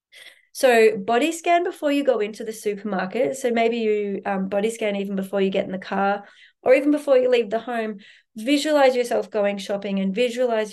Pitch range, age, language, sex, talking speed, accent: 200-250 Hz, 30-49, English, female, 195 wpm, Australian